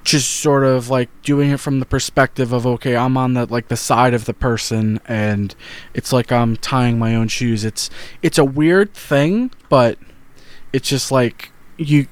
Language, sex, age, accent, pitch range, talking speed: English, male, 20-39, American, 120-150 Hz, 190 wpm